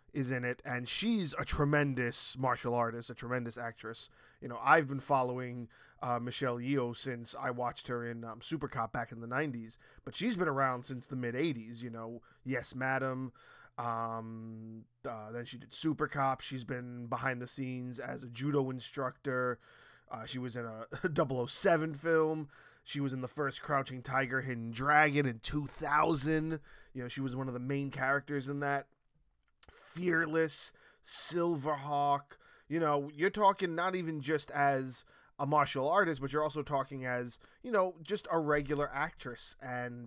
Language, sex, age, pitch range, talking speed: English, male, 20-39, 120-145 Hz, 170 wpm